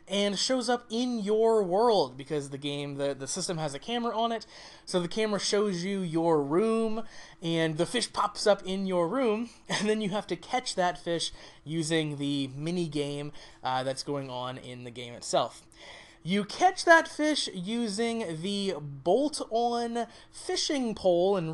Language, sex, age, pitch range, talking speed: English, male, 20-39, 145-210 Hz, 175 wpm